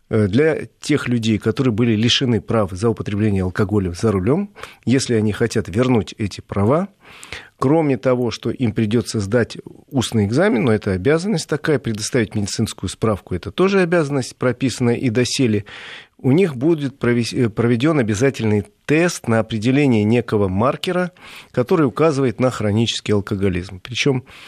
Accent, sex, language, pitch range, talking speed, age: native, male, Russian, 110-140 Hz, 135 wpm, 40-59